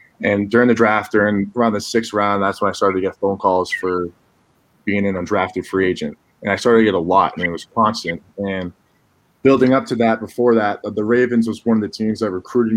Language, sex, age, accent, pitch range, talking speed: English, male, 20-39, American, 100-115 Hz, 235 wpm